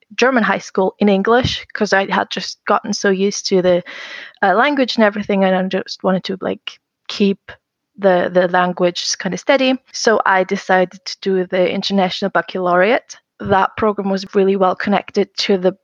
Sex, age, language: female, 20-39, English